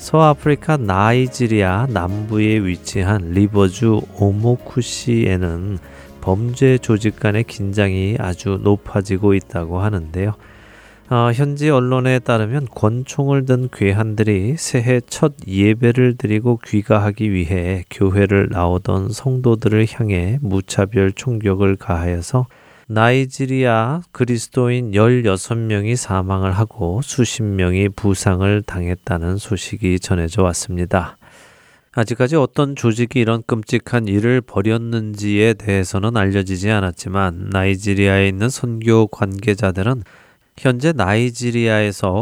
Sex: male